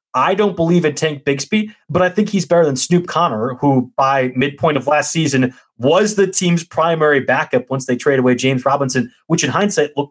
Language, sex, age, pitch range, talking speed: English, male, 30-49, 125-160 Hz, 210 wpm